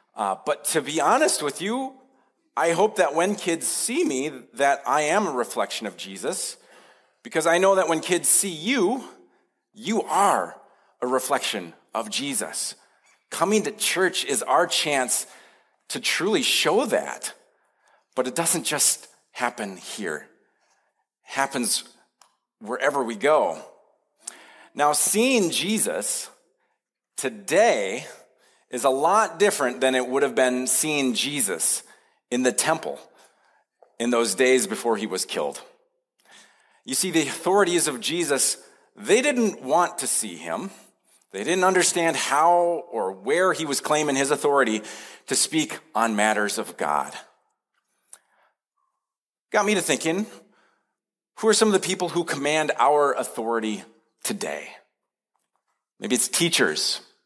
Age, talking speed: 40-59, 135 wpm